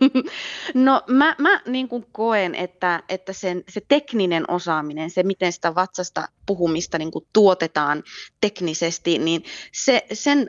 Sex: female